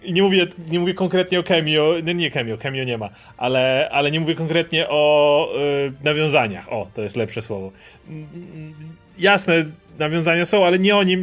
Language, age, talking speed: Polish, 30-49, 185 wpm